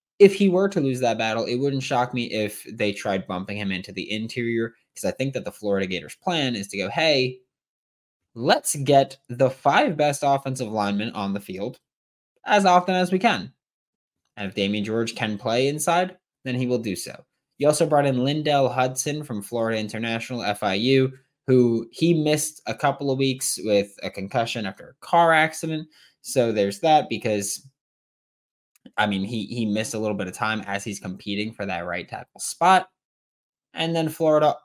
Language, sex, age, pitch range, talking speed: English, male, 20-39, 100-145 Hz, 185 wpm